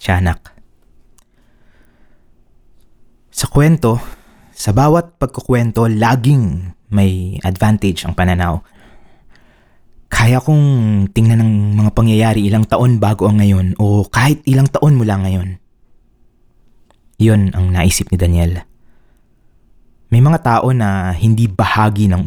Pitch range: 95-125 Hz